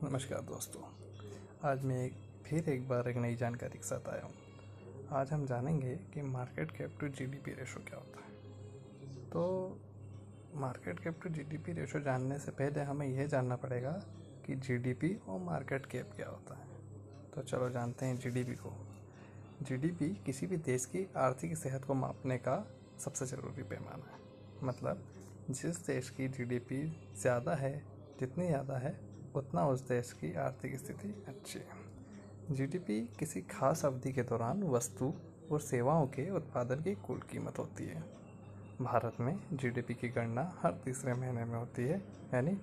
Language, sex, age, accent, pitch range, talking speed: Hindi, male, 20-39, native, 110-140 Hz, 160 wpm